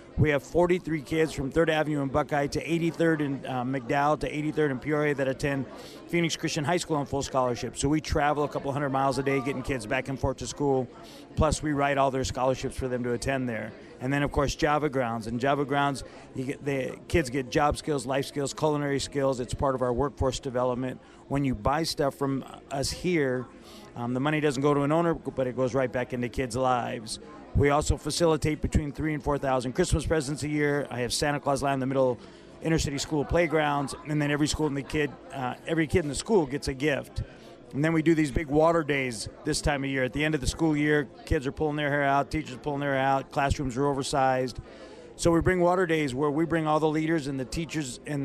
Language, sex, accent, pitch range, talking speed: English, male, American, 130-155 Hz, 235 wpm